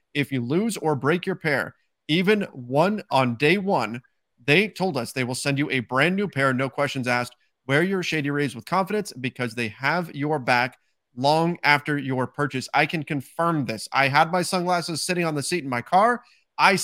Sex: male